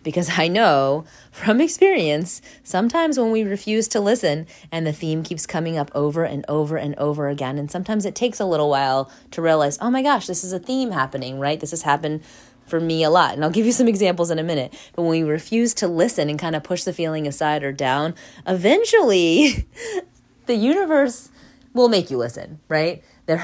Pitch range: 140-185 Hz